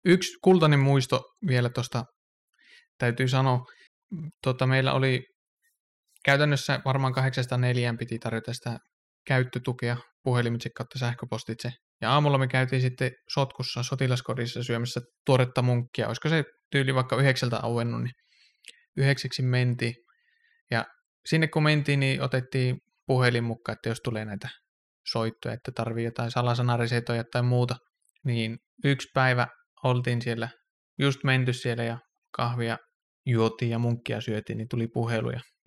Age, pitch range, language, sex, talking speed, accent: 20-39, 120-140 Hz, Finnish, male, 125 wpm, native